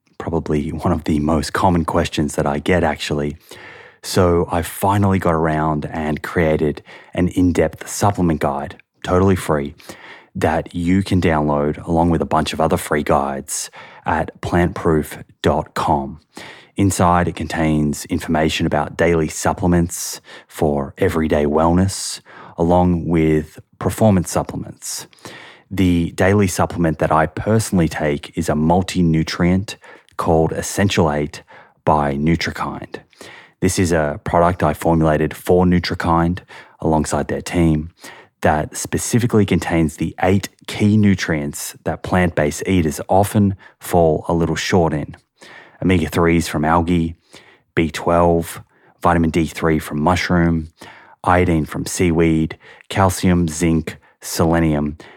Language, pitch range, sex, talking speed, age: English, 80-90 Hz, male, 120 wpm, 20-39